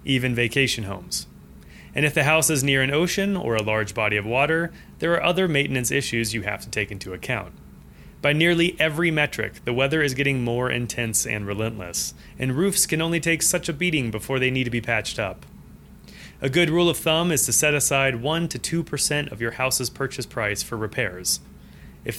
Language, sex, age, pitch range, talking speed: English, male, 30-49, 110-150 Hz, 200 wpm